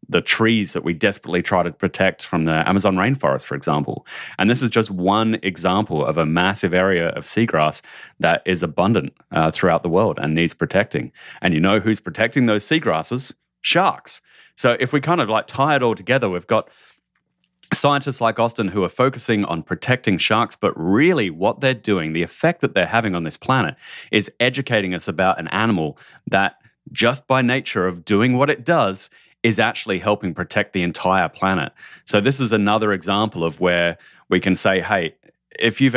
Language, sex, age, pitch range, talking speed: English, male, 30-49, 90-115 Hz, 190 wpm